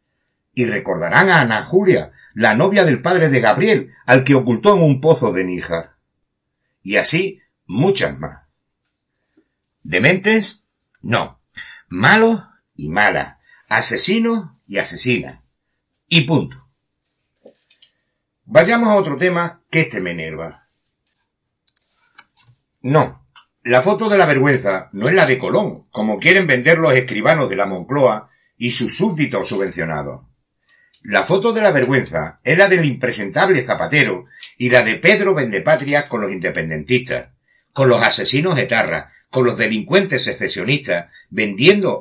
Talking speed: 130 wpm